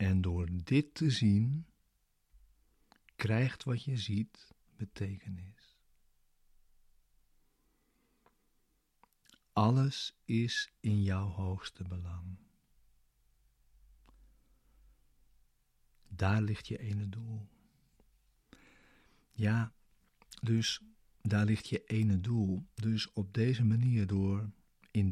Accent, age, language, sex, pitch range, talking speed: Dutch, 50-69, Dutch, male, 95-115 Hz, 80 wpm